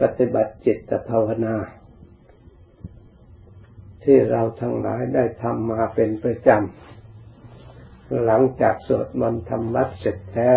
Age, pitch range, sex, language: 60-79, 105-120 Hz, male, Thai